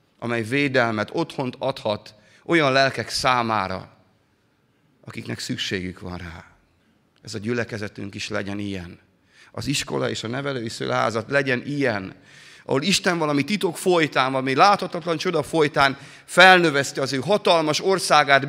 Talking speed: 125 wpm